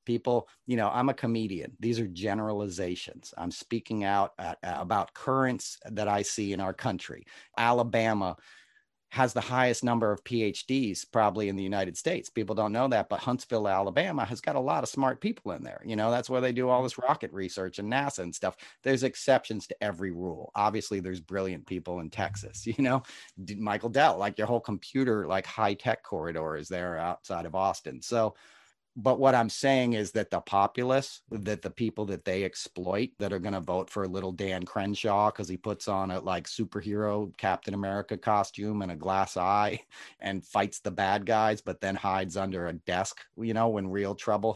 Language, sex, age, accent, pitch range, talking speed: English, male, 40-59, American, 95-115 Hz, 195 wpm